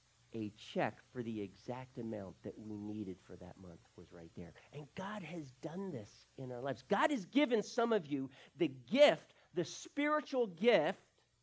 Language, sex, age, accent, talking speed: English, male, 50-69, American, 180 wpm